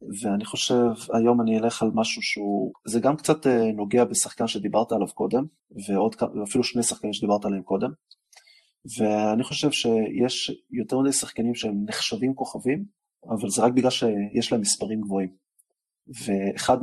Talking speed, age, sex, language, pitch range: 140 wpm, 30-49, male, Hebrew, 105-145 Hz